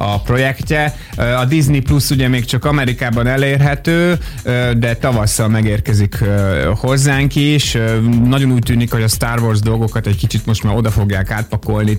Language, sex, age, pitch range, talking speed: Hungarian, male, 30-49, 100-125 Hz, 150 wpm